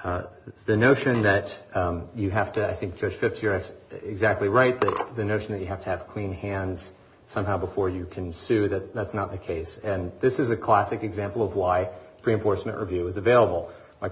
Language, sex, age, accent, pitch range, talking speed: English, male, 40-59, American, 95-110 Hz, 205 wpm